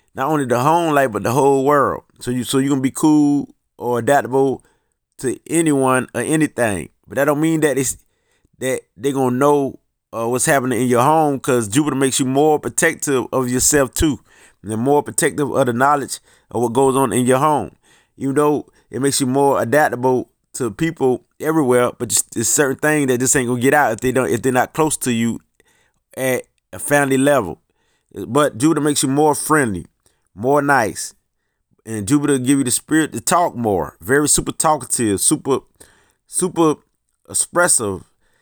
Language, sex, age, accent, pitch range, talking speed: English, male, 30-49, American, 125-150 Hz, 185 wpm